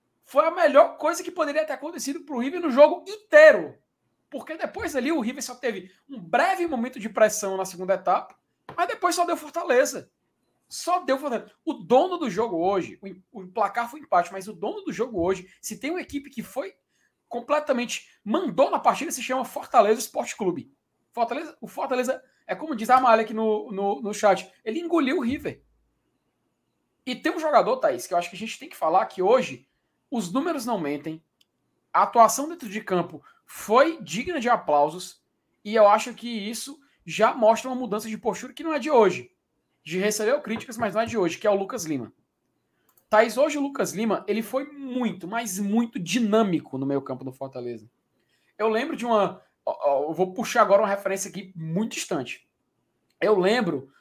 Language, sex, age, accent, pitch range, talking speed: Portuguese, male, 20-39, Brazilian, 200-290 Hz, 190 wpm